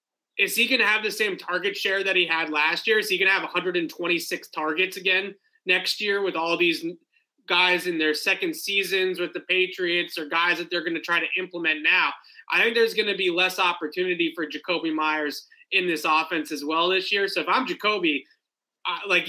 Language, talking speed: English, 215 wpm